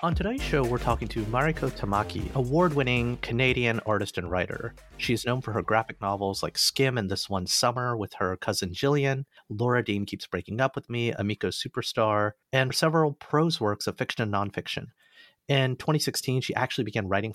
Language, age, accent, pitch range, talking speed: English, 30-49, American, 100-135 Hz, 180 wpm